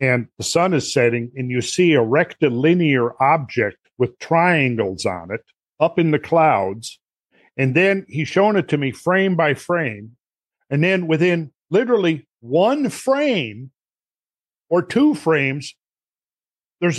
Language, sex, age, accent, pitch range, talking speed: English, male, 50-69, American, 135-180 Hz, 140 wpm